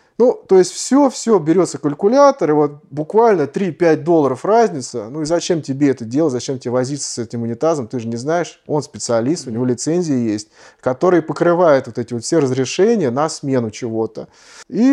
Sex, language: male, Russian